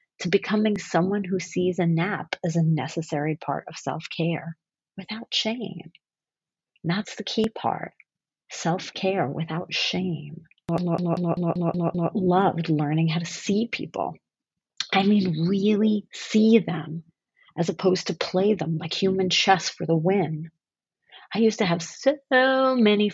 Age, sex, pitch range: 40-59, female, 165-200 Hz